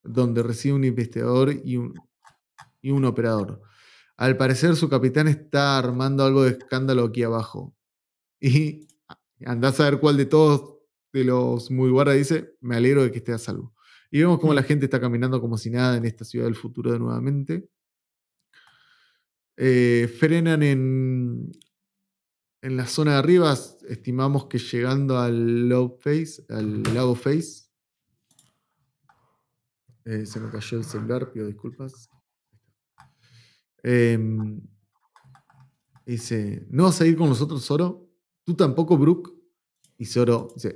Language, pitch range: Spanish, 115-150 Hz